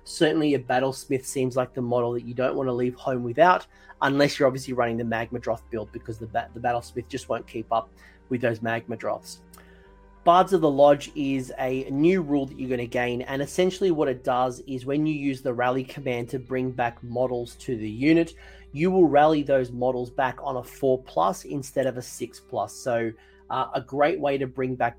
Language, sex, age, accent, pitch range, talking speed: English, male, 30-49, Australian, 120-140 Hz, 215 wpm